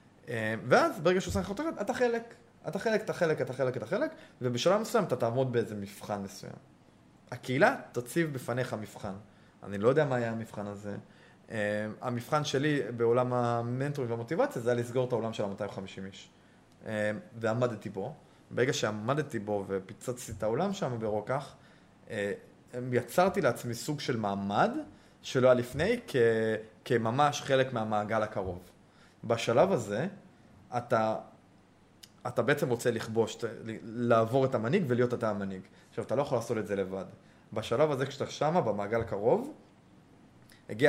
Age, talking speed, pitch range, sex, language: 20-39, 145 wpm, 105-135 Hz, male, Hebrew